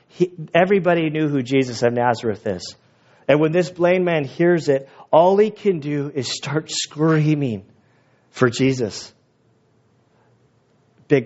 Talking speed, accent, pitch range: 135 wpm, American, 130-165 Hz